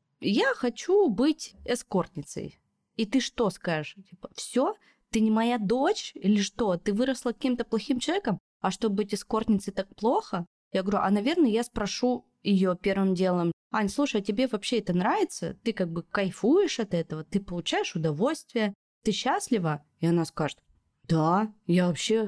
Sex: female